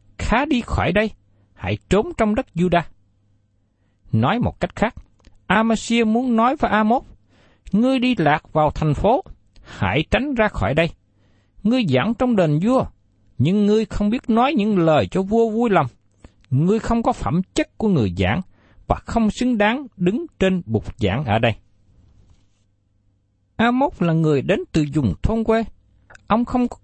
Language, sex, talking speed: Vietnamese, male, 165 wpm